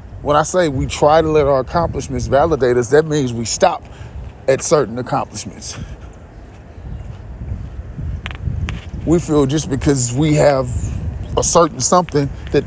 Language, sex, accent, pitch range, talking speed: English, male, American, 95-150 Hz, 135 wpm